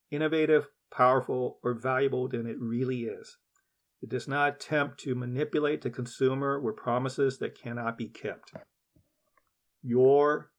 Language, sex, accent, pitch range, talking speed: English, male, American, 125-145 Hz, 130 wpm